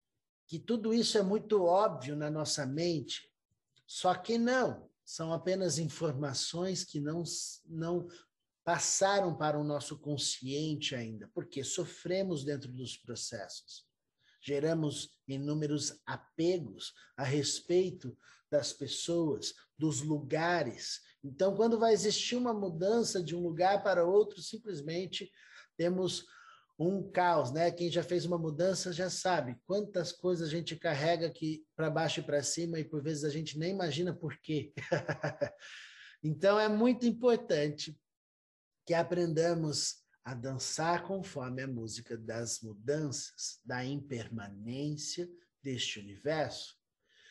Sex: male